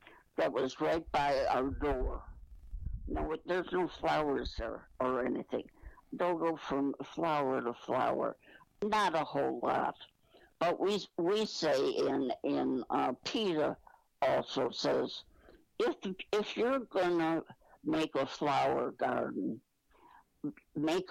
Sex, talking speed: female, 120 wpm